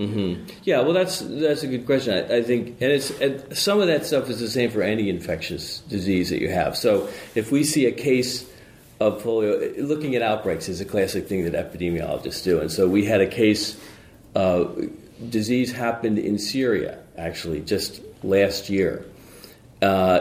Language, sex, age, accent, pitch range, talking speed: English, male, 40-59, American, 100-120 Hz, 185 wpm